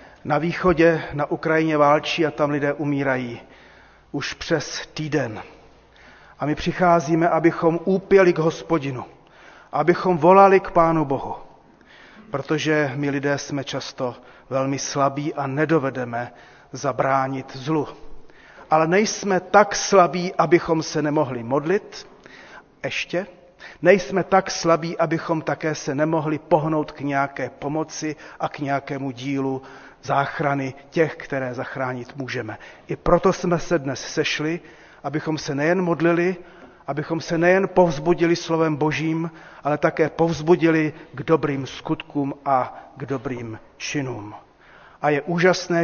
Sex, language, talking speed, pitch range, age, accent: male, Czech, 120 wpm, 140-170 Hz, 40-59, native